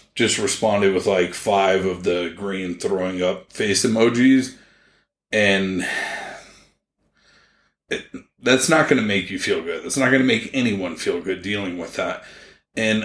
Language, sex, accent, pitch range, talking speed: English, male, American, 95-130 Hz, 150 wpm